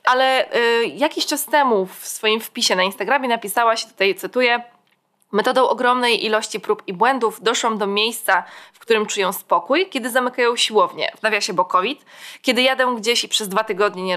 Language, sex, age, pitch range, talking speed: Polish, female, 20-39, 195-250 Hz, 180 wpm